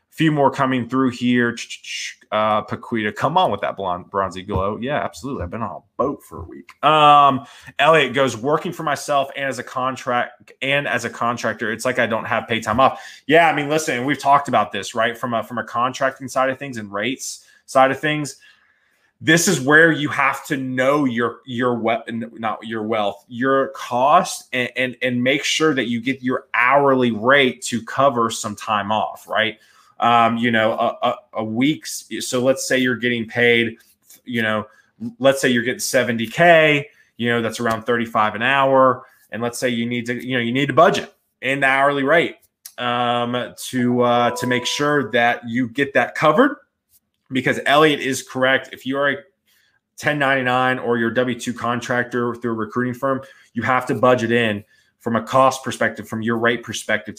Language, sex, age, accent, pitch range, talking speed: English, male, 20-39, American, 115-135 Hz, 195 wpm